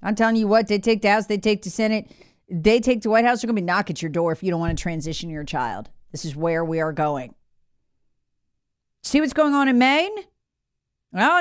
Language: English